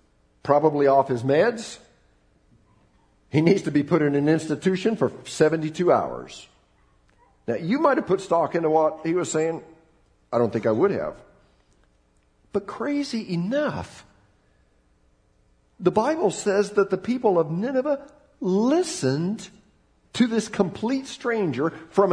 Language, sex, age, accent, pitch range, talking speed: English, male, 50-69, American, 135-215 Hz, 135 wpm